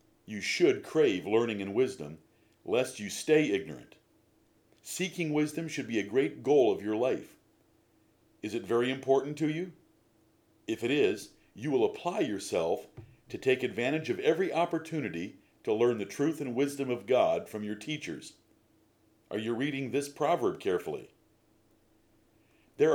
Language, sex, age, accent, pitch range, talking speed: English, male, 50-69, American, 105-150 Hz, 150 wpm